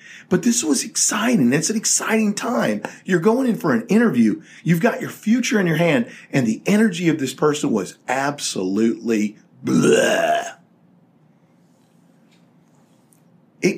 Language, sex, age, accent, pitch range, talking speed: English, male, 40-59, American, 140-215 Hz, 135 wpm